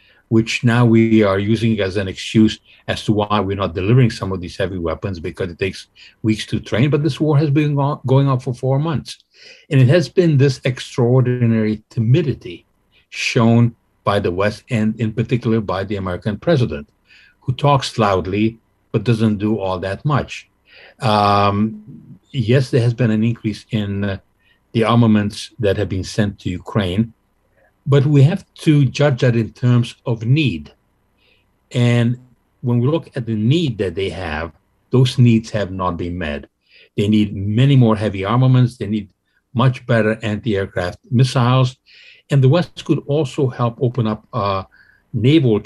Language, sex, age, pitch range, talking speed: English, male, 60-79, 100-125 Hz, 165 wpm